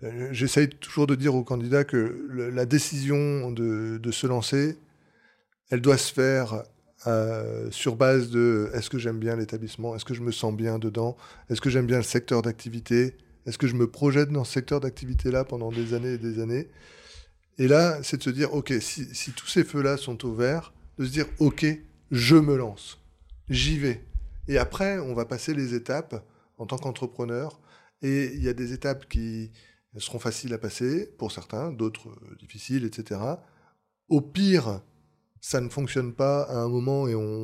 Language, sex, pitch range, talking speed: French, male, 115-140 Hz, 190 wpm